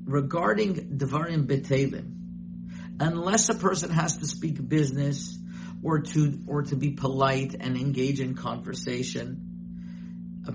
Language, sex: English, male